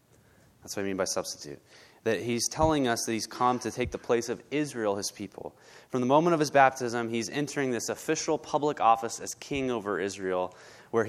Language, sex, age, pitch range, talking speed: English, male, 20-39, 105-135 Hz, 205 wpm